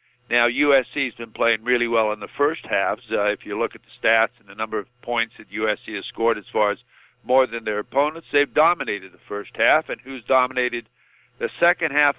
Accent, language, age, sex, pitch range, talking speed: American, English, 50-69, male, 115-135 Hz, 215 wpm